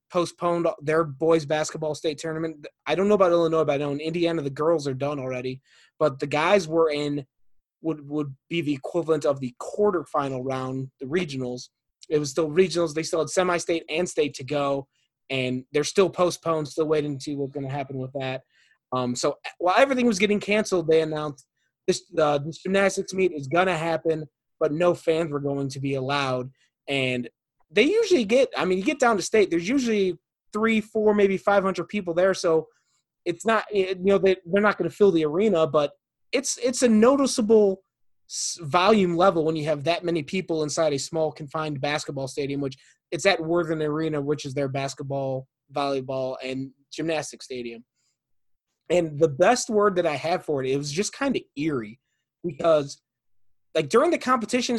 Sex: male